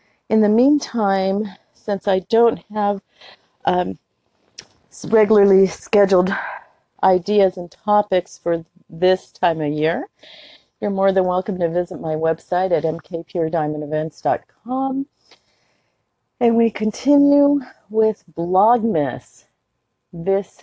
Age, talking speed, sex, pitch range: 40-59, 100 wpm, female, 160-215 Hz